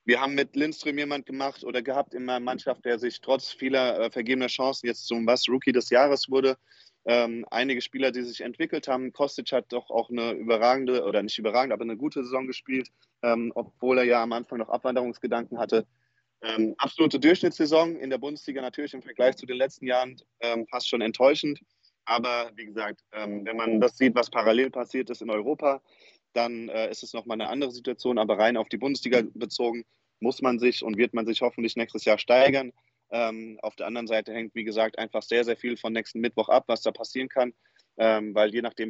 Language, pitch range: German, 115-130 Hz